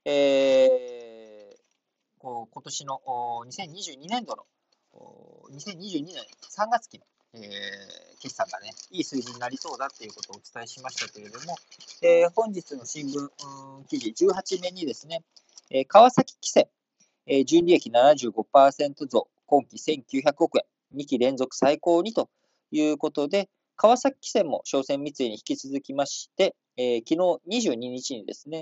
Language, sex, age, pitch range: Japanese, male, 40-59, 130-200 Hz